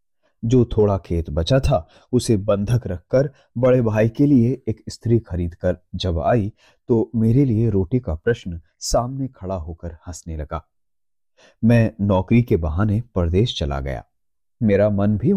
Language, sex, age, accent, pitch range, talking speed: Hindi, male, 30-49, native, 90-125 Hz, 150 wpm